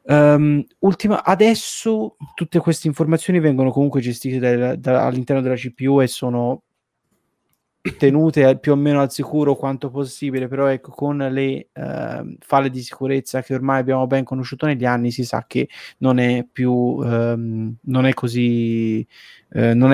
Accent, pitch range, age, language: native, 125-150 Hz, 20-39, Italian